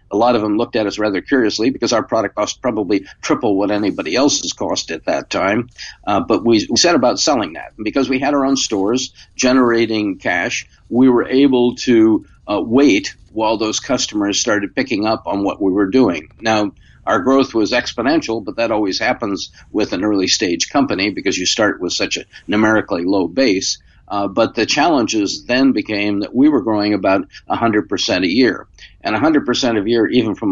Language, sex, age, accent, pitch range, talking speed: English, male, 50-69, American, 100-130 Hz, 205 wpm